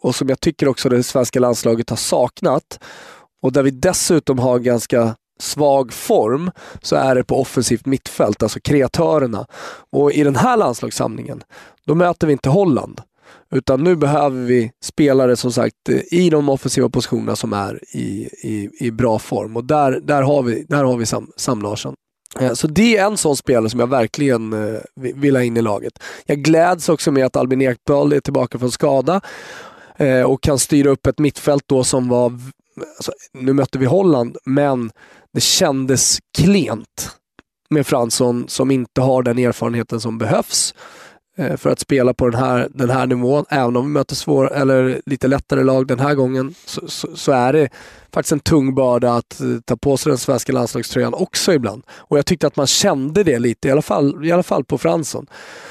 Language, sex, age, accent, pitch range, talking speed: Swedish, male, 20-39, native, 125-145 Hz, 180 wpm